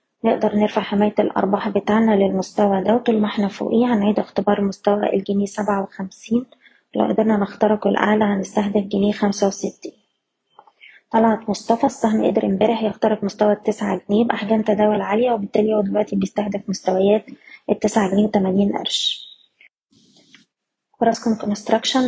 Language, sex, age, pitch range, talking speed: Arabic, female, 20-39, 205-220 Hz, 130 wpm